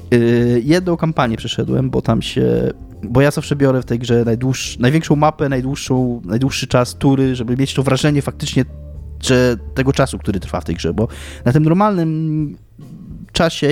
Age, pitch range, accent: 20-39, 115-160 Hz, native